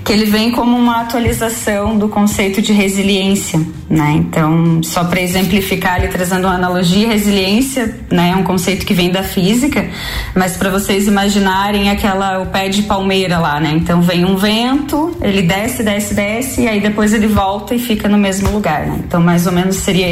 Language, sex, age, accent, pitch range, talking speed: Portuguese, female, 20-39, Brazilian, 180-225 Hz, 190 wpm